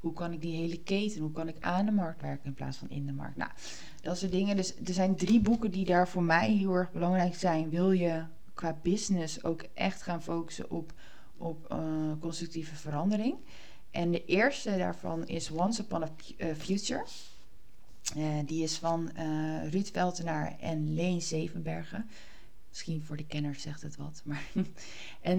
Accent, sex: Dutch, female